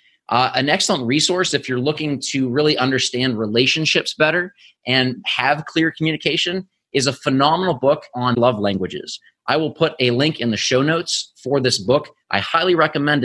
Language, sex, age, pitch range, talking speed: English, male, 30-49, 130-160 Hz, 170 wpm